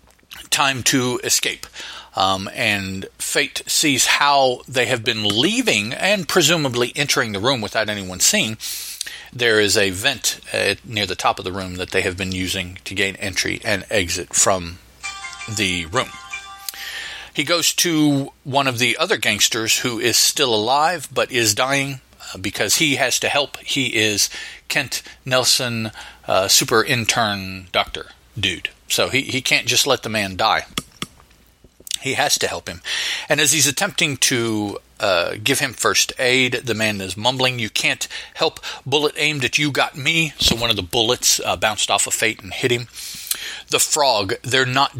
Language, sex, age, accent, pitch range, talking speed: English, male, 40-59, American, 105-140 Hz, 170 wpm